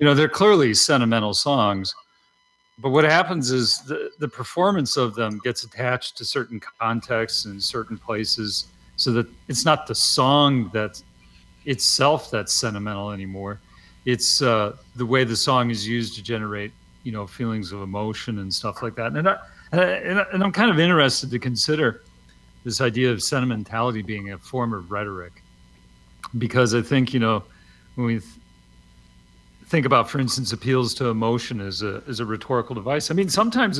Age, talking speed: 40-59, 165 wpm